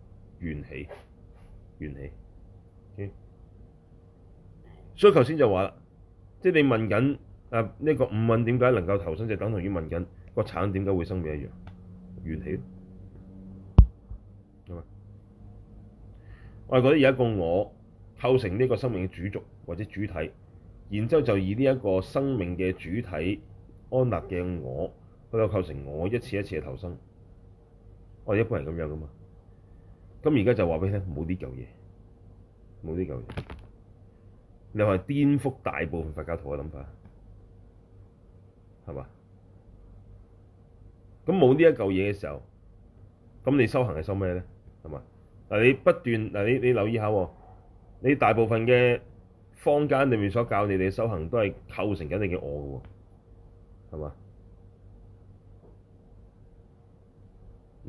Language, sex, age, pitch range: Chinese, male, 30-49, 95-110 Hz